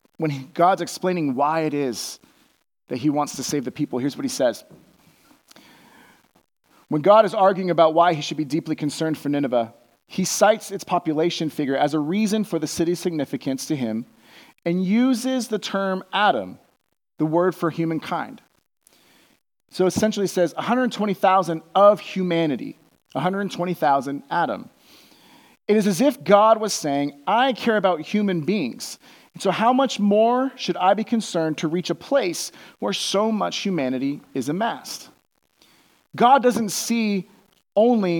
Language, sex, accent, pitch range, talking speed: English, male, American, 150-205 Hz, 150 wpm